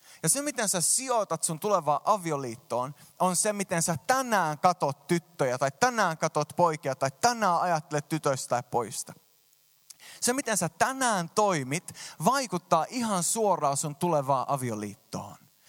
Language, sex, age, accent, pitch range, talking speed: Finnish, male, 20-39, native, 130-180 Hz, 140 wpm